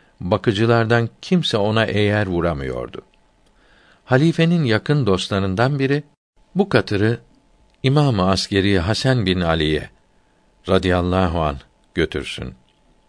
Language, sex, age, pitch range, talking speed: Turkish, male, 60-79, 95-125 Hz, 85 wpm